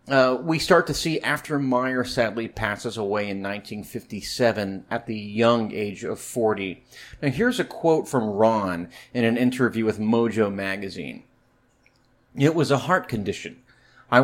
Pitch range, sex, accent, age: 110-135 Hz, male, American, 30-49